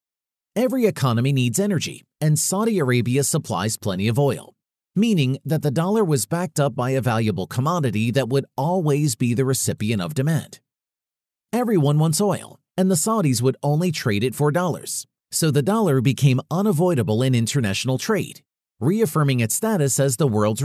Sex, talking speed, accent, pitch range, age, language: male, 165 wpm, American, 125-165 Hz, 40-59, English